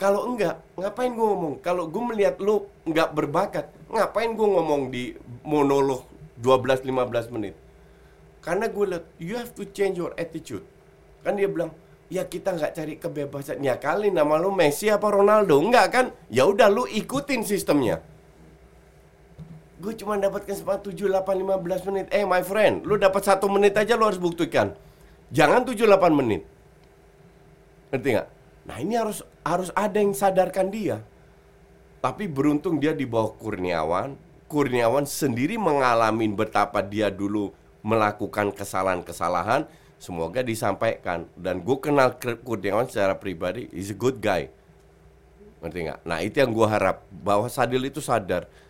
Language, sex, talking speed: Indonesian, male, 140 wpm